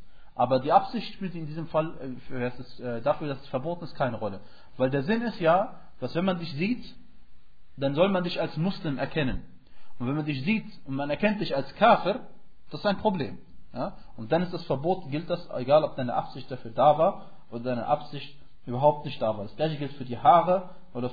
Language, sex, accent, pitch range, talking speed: German, male, German, 120-160 Hz, 210 wpm